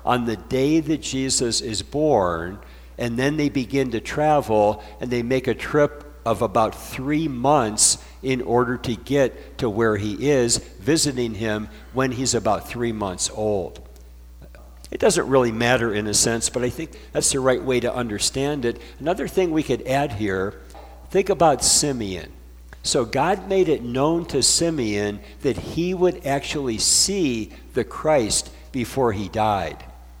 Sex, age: male, 60-79